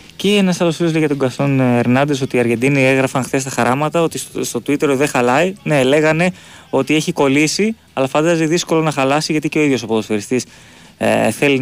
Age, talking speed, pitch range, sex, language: 20-39, 195 wpm, 125-165 Hz, male, Greek